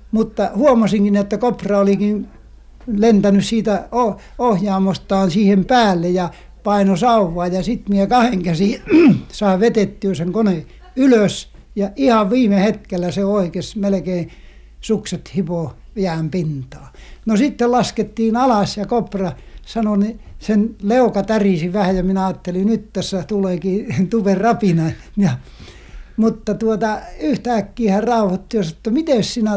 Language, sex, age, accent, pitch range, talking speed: Finnish, male, 60-79, native, 190-225 Hz, 130 wpm